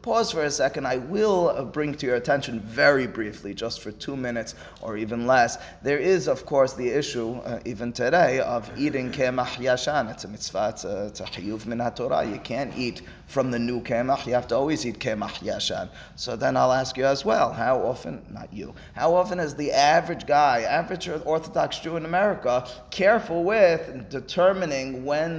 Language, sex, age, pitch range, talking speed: English, male, 30-49, 120-145 Hz, 190 wpm